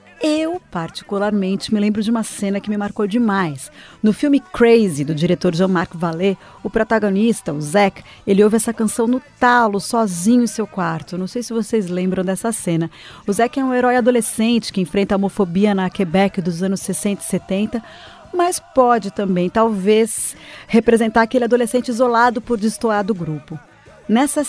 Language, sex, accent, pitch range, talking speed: Portuguese, female, Brazilian, 195-240 Hz, 170 wpm